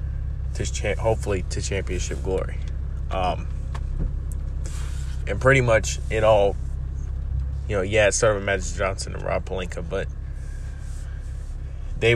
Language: English